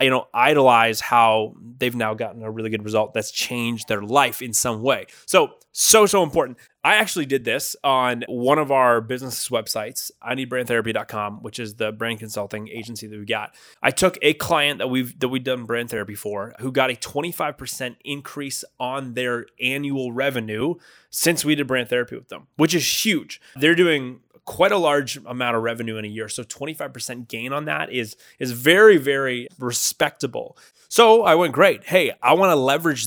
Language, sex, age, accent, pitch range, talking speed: English, male, 20-39, American, 115-145 Hz, 180 wpm